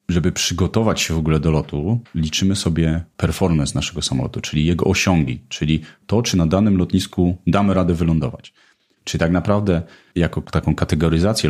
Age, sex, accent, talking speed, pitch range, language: 30-49, male, native, 155 wpm, 85-110 Hz, Polish